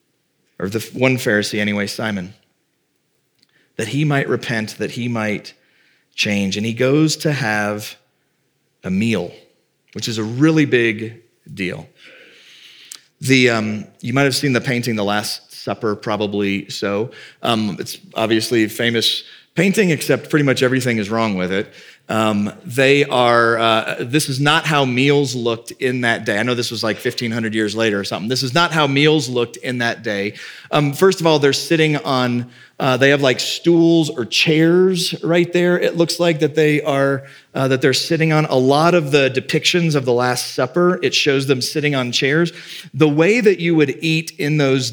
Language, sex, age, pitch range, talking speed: English, male, 40-59, 115-155 Hz, 180 wpm